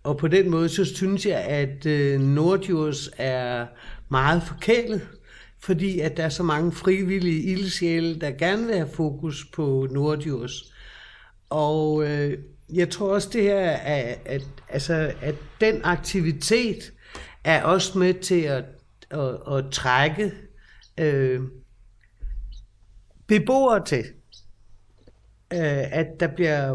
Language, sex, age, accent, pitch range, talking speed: Danish, male, 60-79, native, 140-185 Hz, 130 wpm